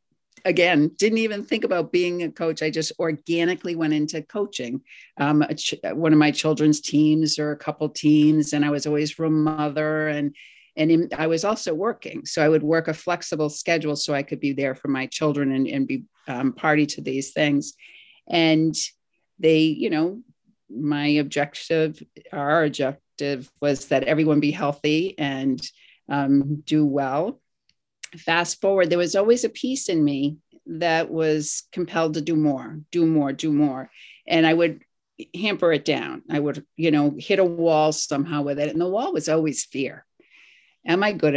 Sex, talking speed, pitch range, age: female, 175 wpm, 145-165 Hz, 50-69